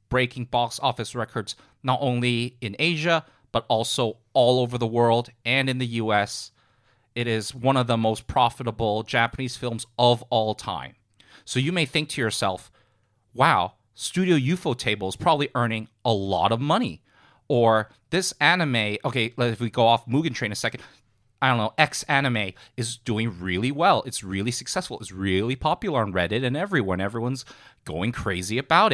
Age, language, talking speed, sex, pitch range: 30-49, English, 165 wpm, male, 110-135 Hz